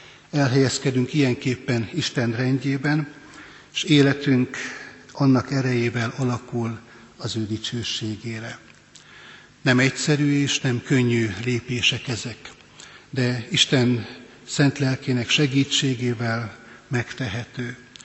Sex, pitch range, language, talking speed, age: male, 120-140 Hz, Hungarian, 85 wpm, 60-79